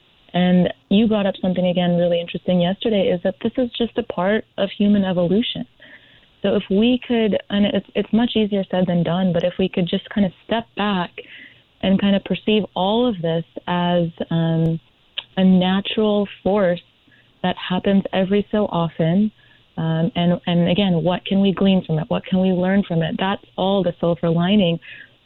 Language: English